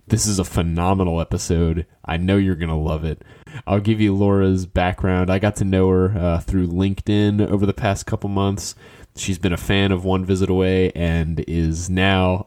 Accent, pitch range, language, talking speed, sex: American, 85-105 Hz, English, 195 wpm, male